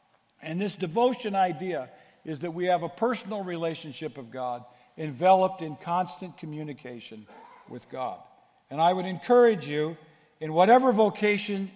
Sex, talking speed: male, 140 wpm